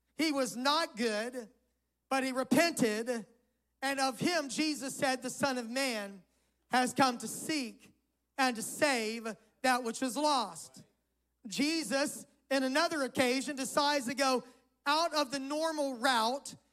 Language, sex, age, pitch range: English, male, 40-59, 245-305 Hz